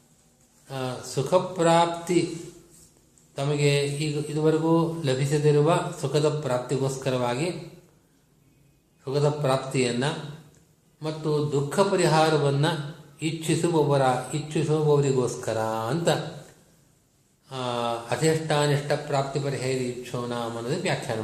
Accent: native